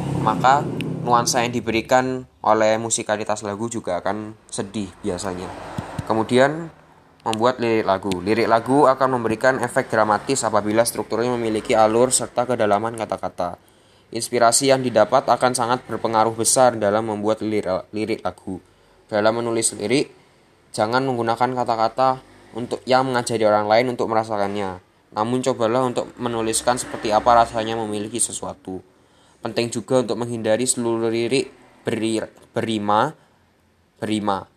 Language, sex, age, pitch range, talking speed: Indonesian, male, 10-29, 105-120 Hz, 120 wpm